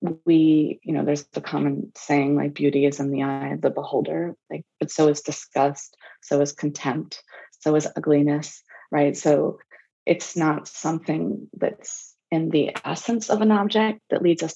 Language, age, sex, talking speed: English, 20-39, female, 175 wpm